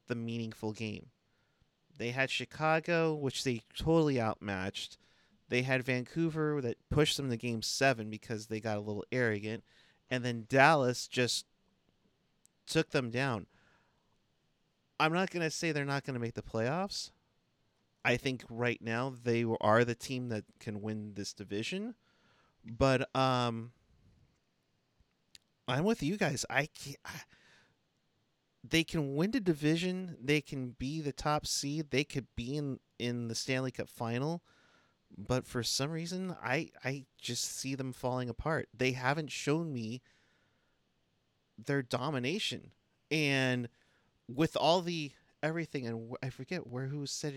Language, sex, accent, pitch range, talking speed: English, male, American, 120-150 Hz, 140 wpm